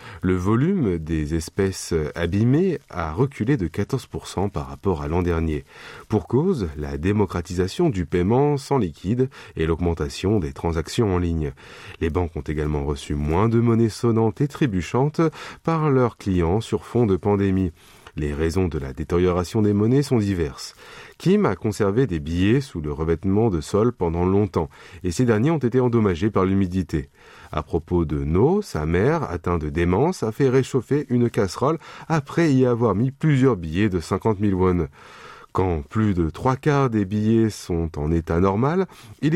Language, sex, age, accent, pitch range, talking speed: French, male, 30-49, French, 85-130 Hz, 170 wpm